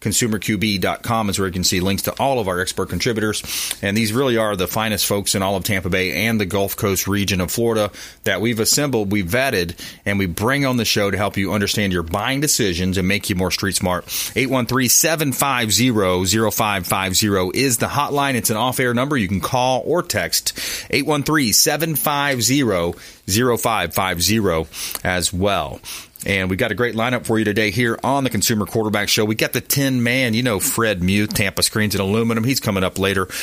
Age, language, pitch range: 30-49, English, 95-115 Hz